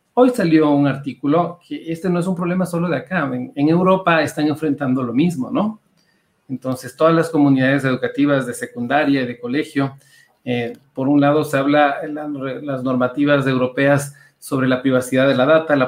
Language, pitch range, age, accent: Spanish, 130-155 Hz, 40-59, Mexican